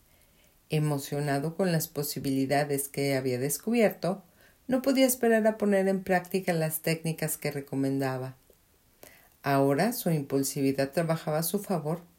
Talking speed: 125 wpm